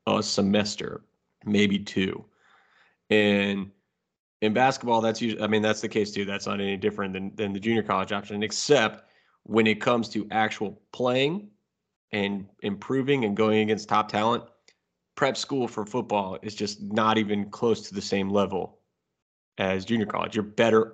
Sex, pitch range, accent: male, 100-115 Hz, American